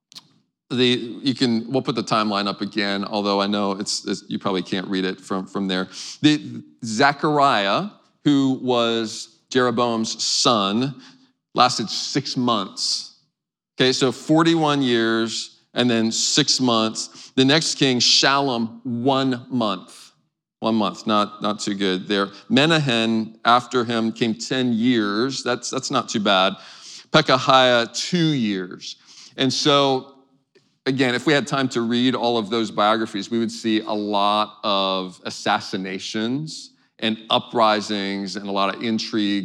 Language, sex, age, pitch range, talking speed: English, male, 40-59, 105-130 Hz, 145 wpm